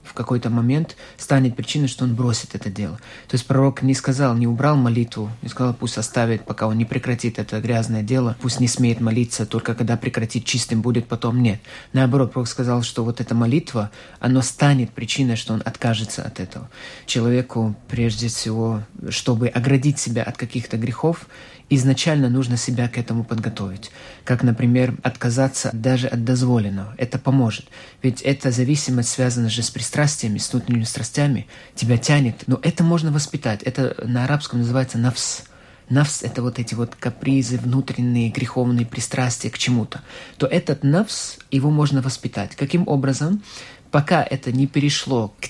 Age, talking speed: 30-49, 160 wpm